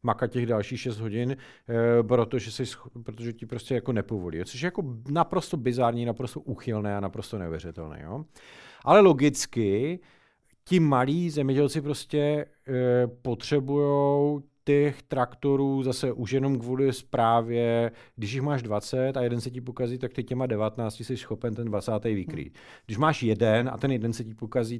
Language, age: Czech, 40-59